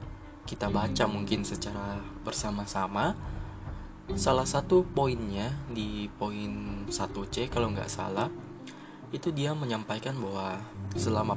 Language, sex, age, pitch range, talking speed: Indonesian, male, 20-39, 100-120 Hz, 100 wpm